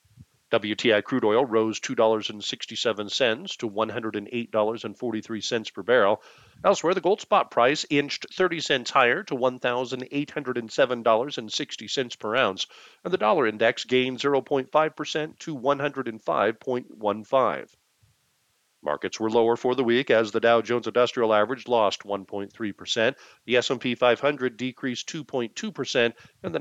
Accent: American